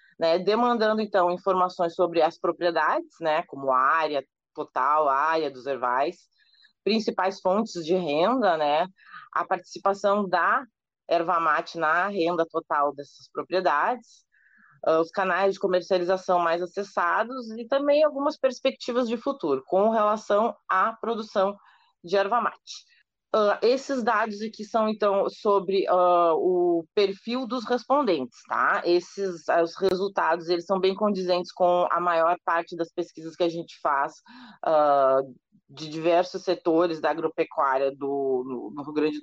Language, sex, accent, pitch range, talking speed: Portuguese, female, Brazilian, 160-205 Hz, 140 wpm